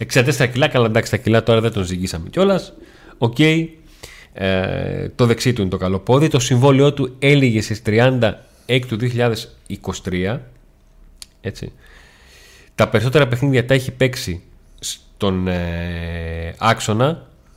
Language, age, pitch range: Greek, 30-49, 90-125 Hz